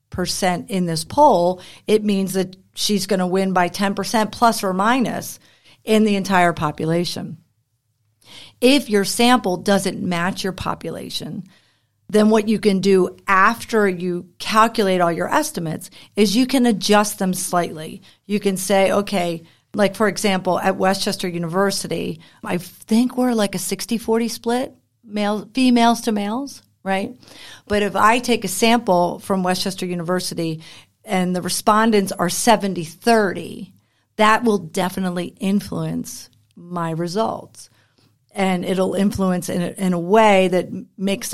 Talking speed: 140 wpm